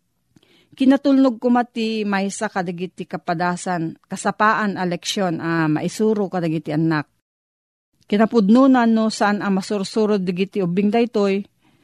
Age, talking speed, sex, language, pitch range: 40-59, 115 wpm, female, Filipino, 180-220 Hz